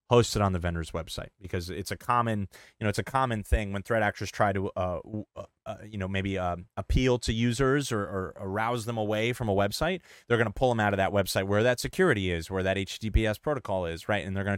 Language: English